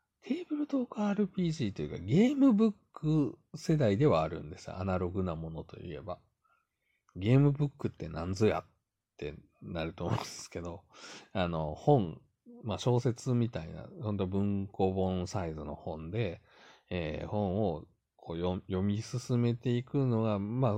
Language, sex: Japanese, male